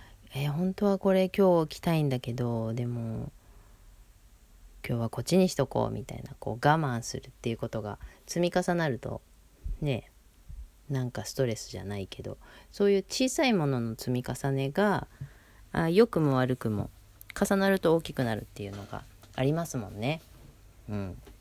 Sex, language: female, Japanese